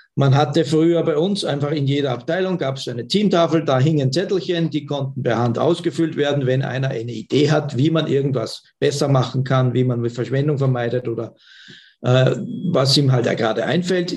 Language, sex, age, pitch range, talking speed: German, male, 50-69, 130-160 Hz, 195 wpm